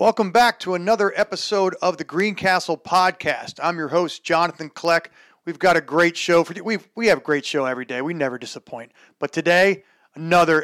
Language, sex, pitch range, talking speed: English, male, 155-185 Hz, 190 wpm